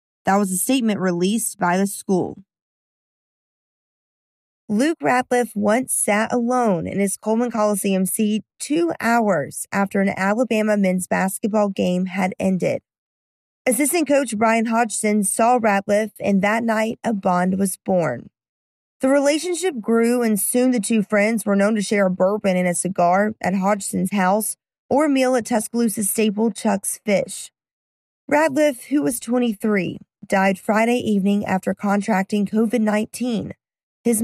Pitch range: 195-235 Hz